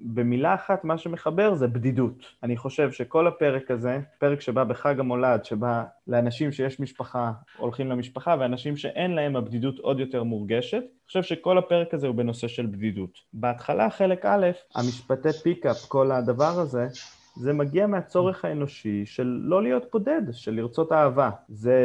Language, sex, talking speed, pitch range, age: Hebrew, male, 155 wpm, 120-155 Hz, 20-39